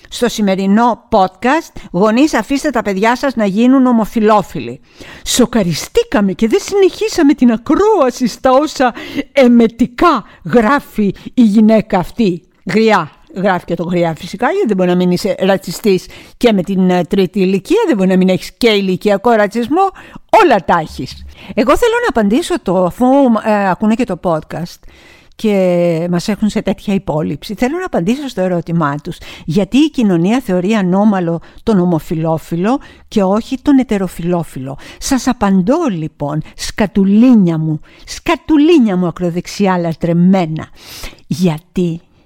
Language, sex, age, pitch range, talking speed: Greek, female, 50-69, 180-245 Hz, 140 wpm